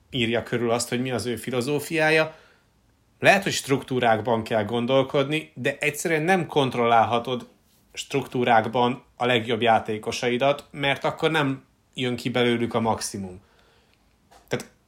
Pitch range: 115-140 Hz